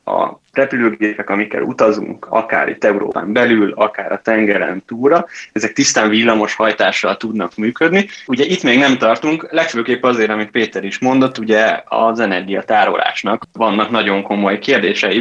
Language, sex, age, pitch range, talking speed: Hungarian, male, 20-39, 105-120 Hz, 140 wpm